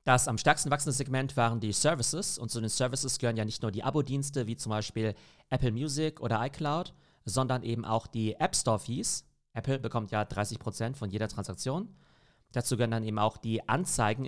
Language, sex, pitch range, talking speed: German, male, 110-140 Hz, 195 wpm